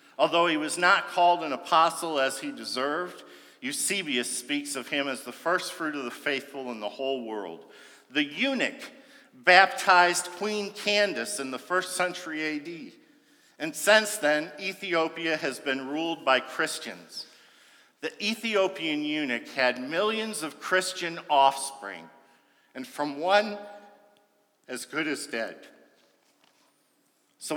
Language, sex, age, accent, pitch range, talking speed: English, male, 50-69, American, 145-205 Hz, 130 wpm